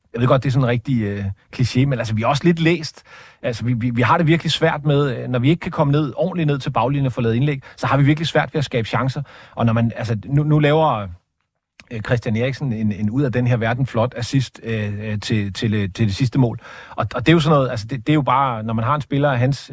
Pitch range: 120-150 Hz